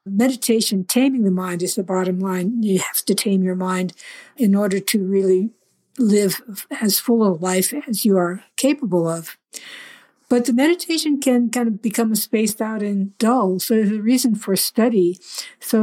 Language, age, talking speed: English, 60-79, 175 wpm